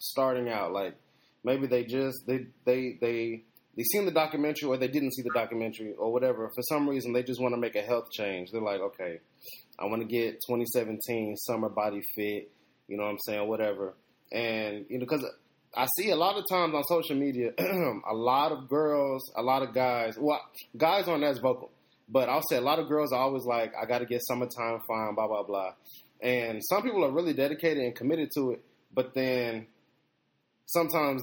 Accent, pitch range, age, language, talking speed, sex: American, 115-140 Hz, 20-39, English, 205 wpm, male